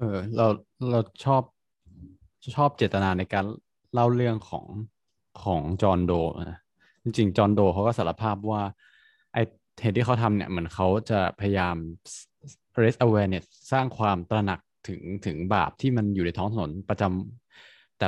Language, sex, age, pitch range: Thai, male, 20-39, 95-115 Hz